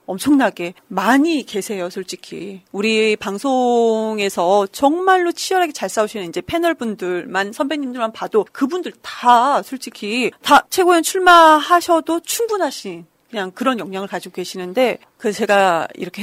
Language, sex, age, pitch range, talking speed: English, female, 40-59, 195-280 Hz, 110 wpm